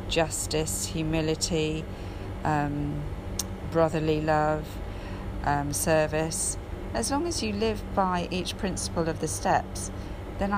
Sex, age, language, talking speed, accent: female, 40-59, English, 110 wpm, British